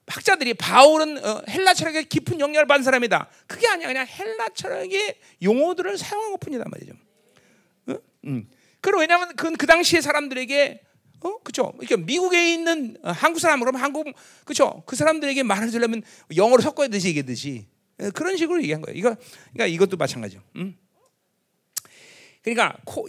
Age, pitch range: 40-59, 195-315 Hz